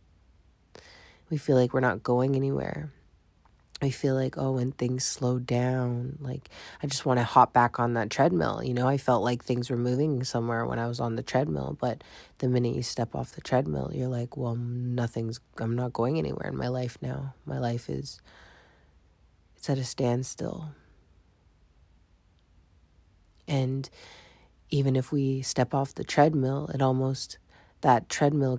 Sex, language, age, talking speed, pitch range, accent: female, English, 20-39, 165 wpm, 115-135 Hz, American